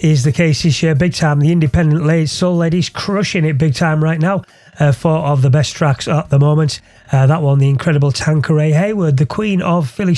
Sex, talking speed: male, 220 wpm